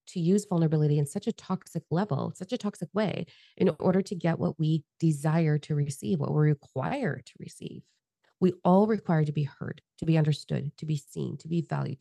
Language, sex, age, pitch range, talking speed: English, female, 20-39, 145-170 Hz, 205 wpm